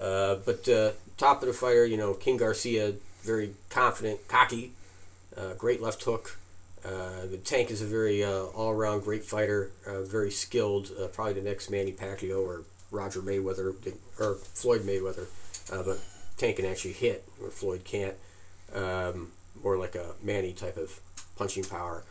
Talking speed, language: 170 wpm, English